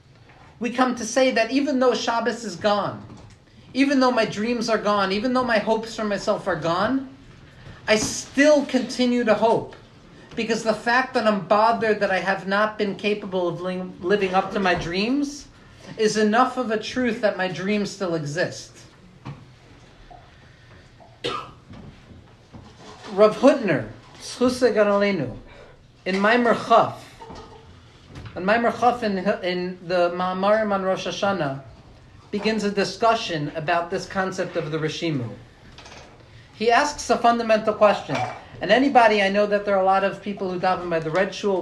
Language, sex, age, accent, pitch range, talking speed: English, male, 40-59, American, 170-220 Hz, 150 wpm